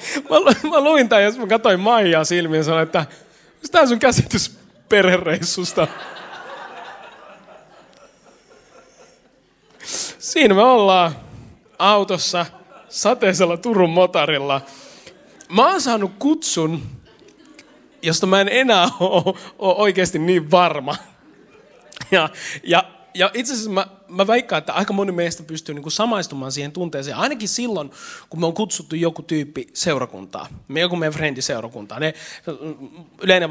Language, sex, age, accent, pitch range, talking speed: Finnish, male, 30-49, native, 165-235 Hz, 125 wpm